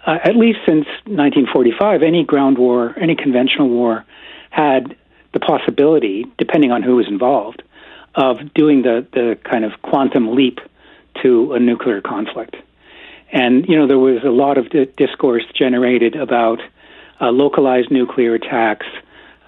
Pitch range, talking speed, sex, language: 120-165 Hz, 140 wpm, male, English